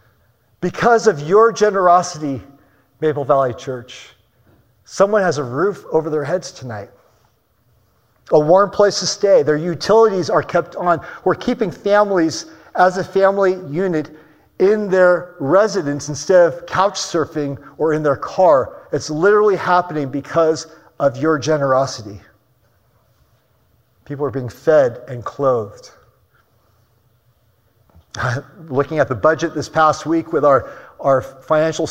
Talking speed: 125 wpm